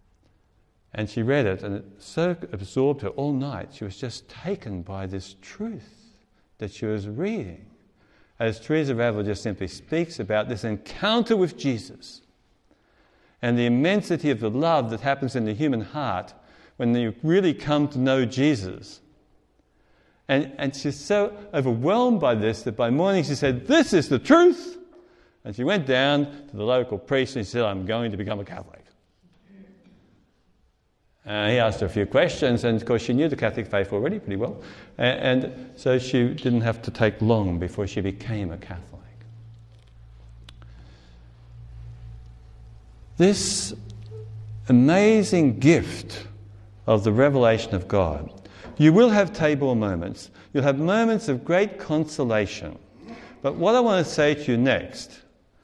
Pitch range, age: 105-150 Hz, 60-79